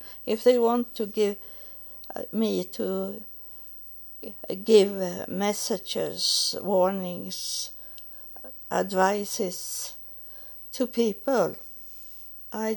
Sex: female